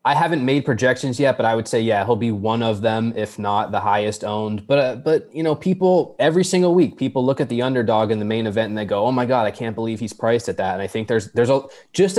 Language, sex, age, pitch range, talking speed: English, male, 20-39, 110-125 Hz, 285 wpm